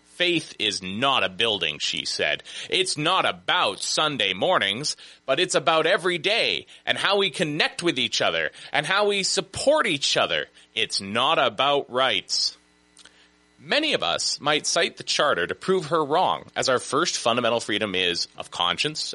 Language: English